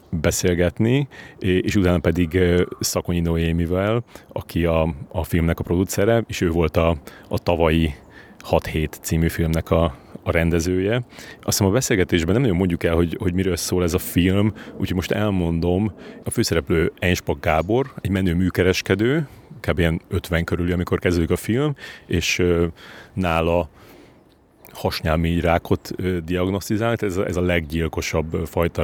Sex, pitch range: male, 85-95 Hz